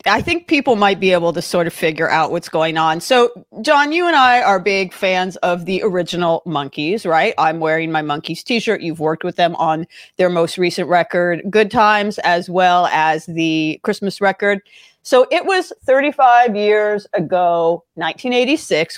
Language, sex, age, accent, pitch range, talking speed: English, female, 40-59, American, 165-225 Hz, 175 wpm